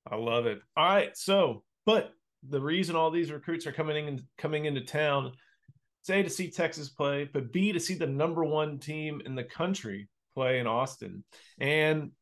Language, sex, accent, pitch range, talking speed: English, male, American, 125-155 Hz, 185 wpm